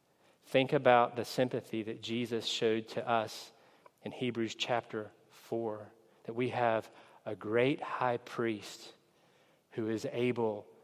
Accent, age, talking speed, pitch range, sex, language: American, 40-59, 125 wpm, 110-155 Hz, male, English